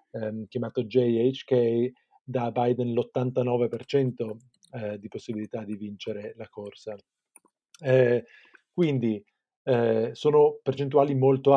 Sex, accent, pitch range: male, native, 110-130 Hz